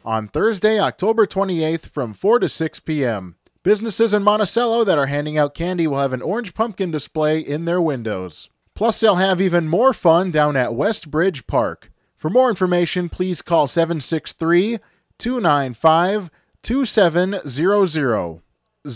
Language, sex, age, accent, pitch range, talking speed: English, male, 20-39, American, 150-205 Hz, 135 wpm